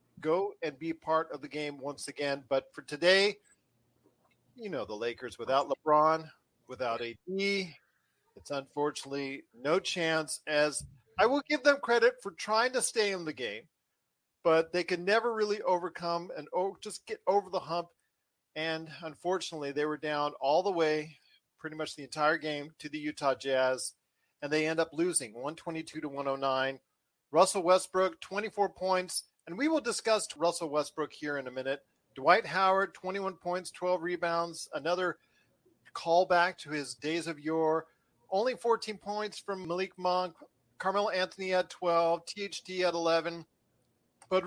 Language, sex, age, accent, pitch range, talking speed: English, male, 40-59, American, 145-185 Hz, 160 wpm